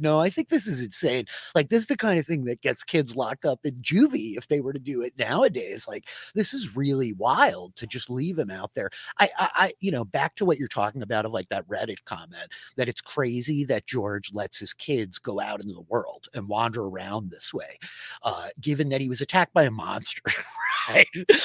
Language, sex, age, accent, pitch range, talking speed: English, male, 30-49, American, 120-175 Hz, 230 wpm